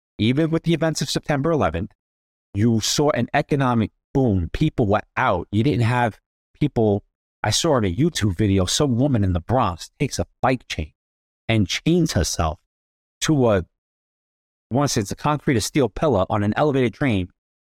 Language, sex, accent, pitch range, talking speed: English, male, American, 100-140 Hz, 180 wpm